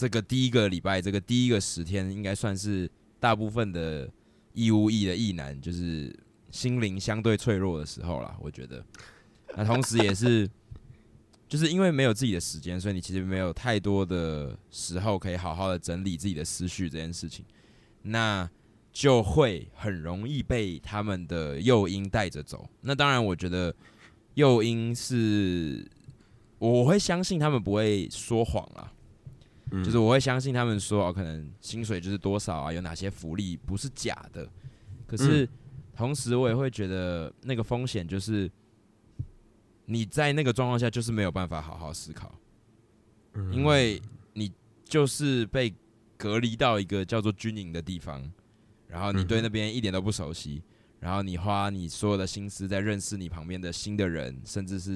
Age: 20-39